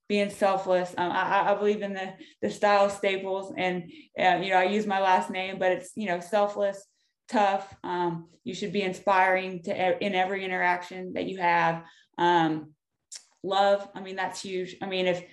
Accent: American